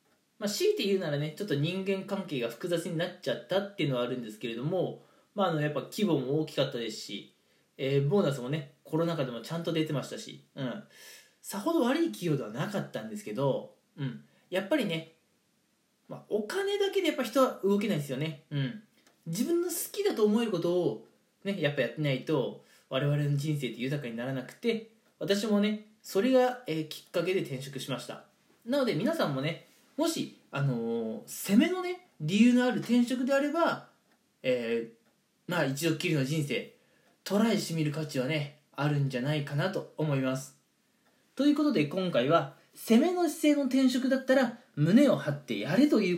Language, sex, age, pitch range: Japanese, male, 20-39, 145-235 Hz